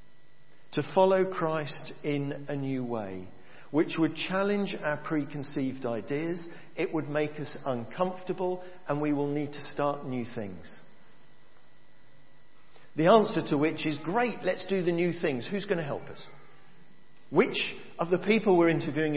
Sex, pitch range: male, 135-180 Hz